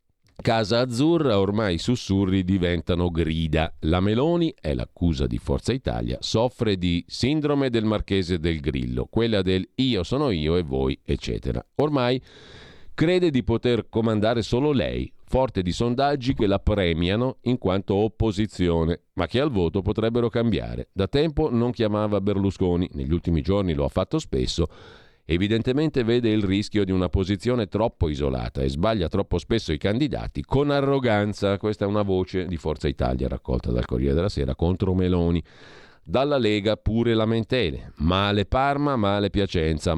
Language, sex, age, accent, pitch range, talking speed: Italian, male, 50-69, native, 85-115 Hz, 155 wpm